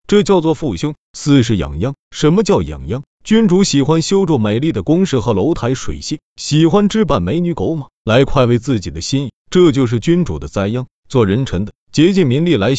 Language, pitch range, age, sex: Chinese, 120-170 Hz, 30-49, male